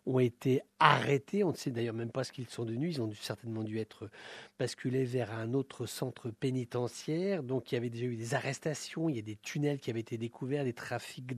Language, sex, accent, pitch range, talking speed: English, male, French, 120-145 Hz, 230 wpm